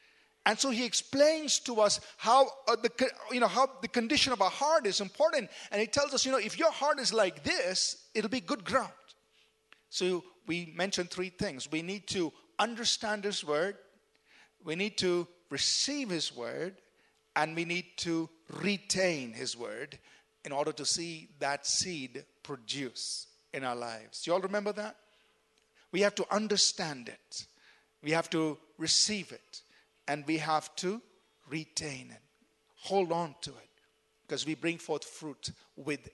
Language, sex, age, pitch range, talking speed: English, male, 50-69, 165-235 Hz, 165 wpm